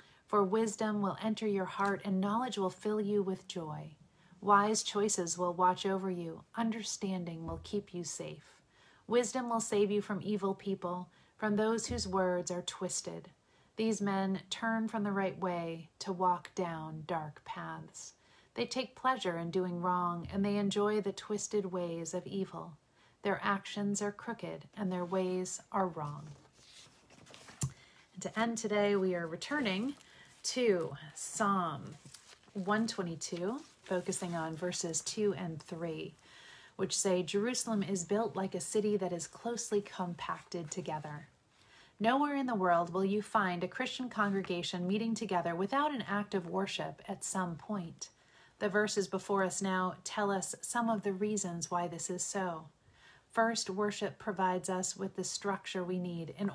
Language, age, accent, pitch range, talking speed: English, 40-59, American, 180-210 Hz, 155 wpm